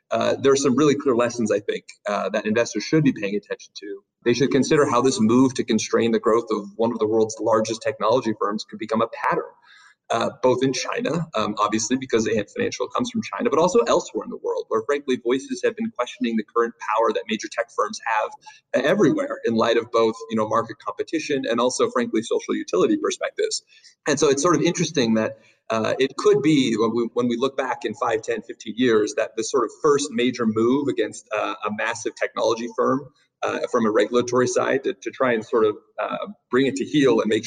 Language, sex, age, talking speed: English, male, 30-49, 225 wpm